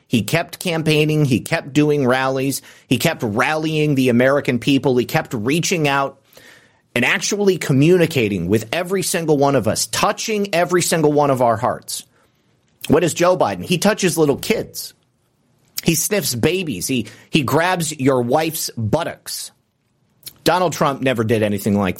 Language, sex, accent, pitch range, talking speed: English, male, American, 120-160 Hz, 155 wpm